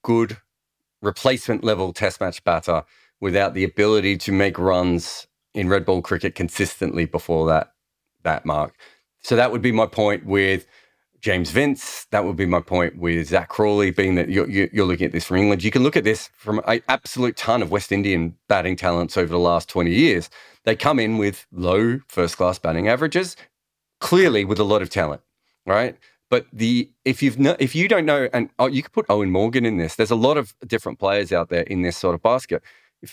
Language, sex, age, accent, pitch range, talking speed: English, male, 40-59, Australian, 90-120 Hz, 205 wpm